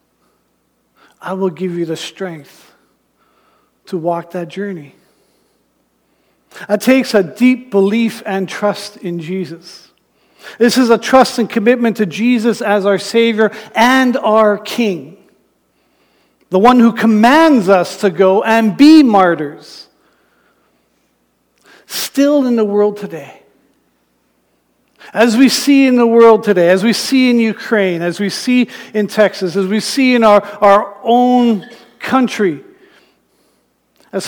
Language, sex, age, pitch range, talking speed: English, male, 50-69, 170-225 Hz, 130 wpm